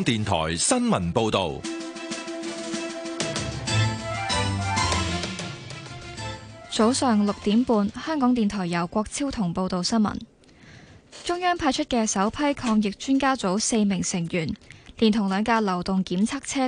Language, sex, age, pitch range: Chinese, female, 20-39, 190-250 Hz